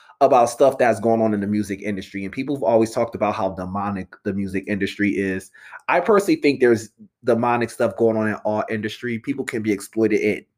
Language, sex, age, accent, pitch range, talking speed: English, male, 20-39, American, 110-140 Hz, 210 wpm